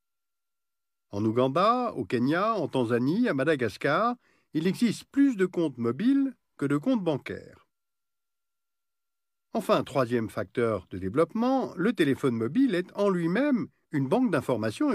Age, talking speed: 50-69, 130 wpm